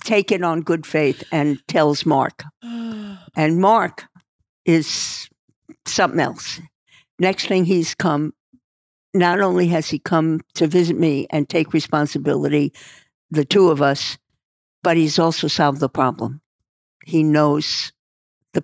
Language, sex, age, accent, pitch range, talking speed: English, female, 60-79, American, 145-170 Hz, 130 wpm